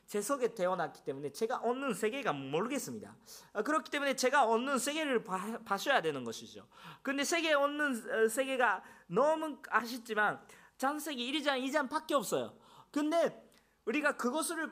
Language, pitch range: Korean, 180-280 Hz